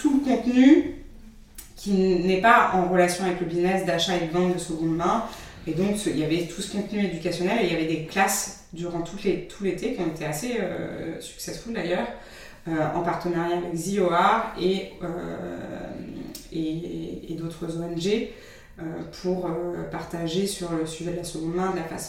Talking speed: 190 wpm